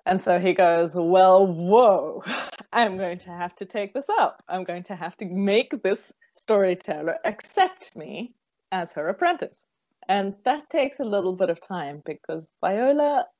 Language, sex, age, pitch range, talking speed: English, female, 20-39, 160-205 Hz, 165 wpm